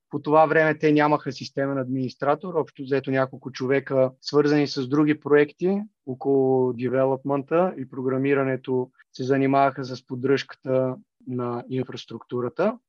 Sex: male